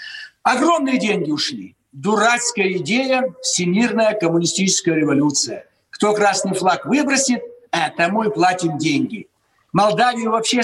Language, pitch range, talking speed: Russian, 180-245 Hz, 105 wpm